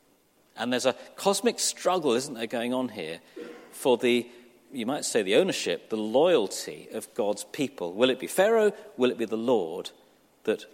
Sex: male